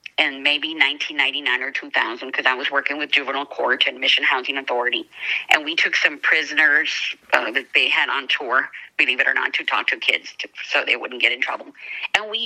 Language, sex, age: English, female, 40-59